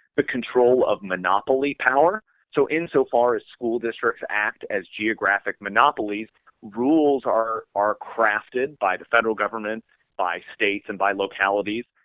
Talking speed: 135 wpm